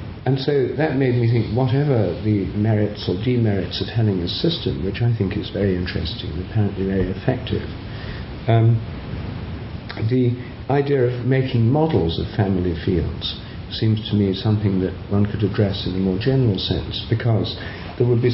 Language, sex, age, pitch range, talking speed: English, male, 50-69, 95-115 Hz, 165 wpm